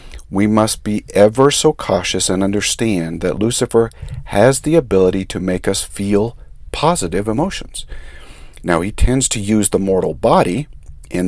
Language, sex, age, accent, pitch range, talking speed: English, male, 50-69, American, 85-125 Hz, 150 wpm